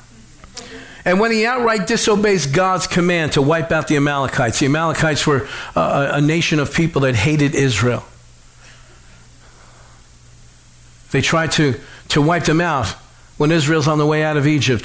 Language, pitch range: English, 120-150 Hz